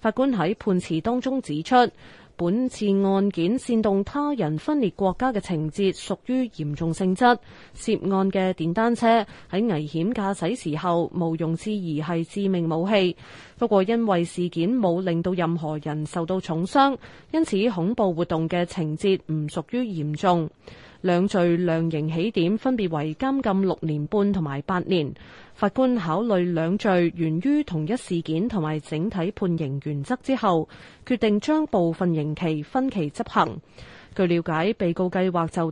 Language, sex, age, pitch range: Chinese, female, 20-39, 165-210 Hz